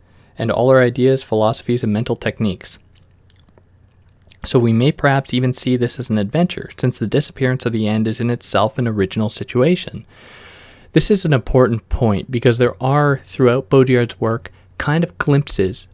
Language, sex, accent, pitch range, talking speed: English, male, American, 95-125 Hz, 165 wpm